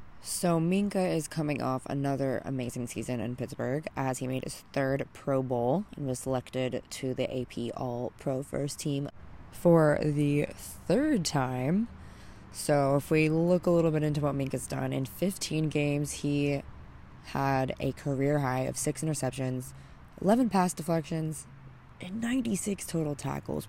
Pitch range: 125-155 Hz